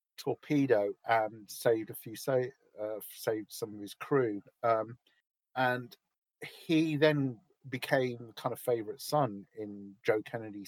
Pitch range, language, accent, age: 110-140 Hz, English, British, 50-69